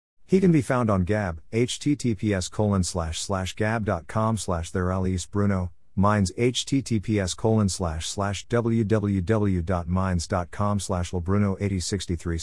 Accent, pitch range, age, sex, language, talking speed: American, 90-115 Hz, 50-69, male, English, 105 wpm